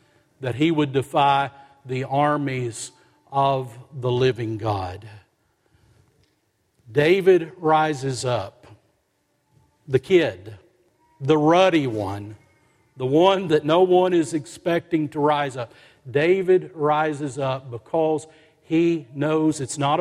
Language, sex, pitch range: English, male, 130-180 Hz